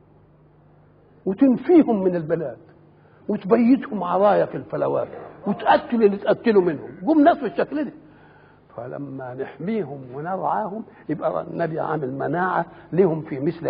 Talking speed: 110 wpm